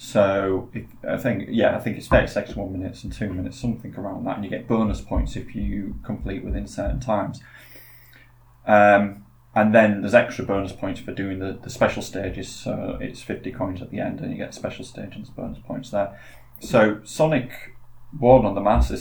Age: 20-39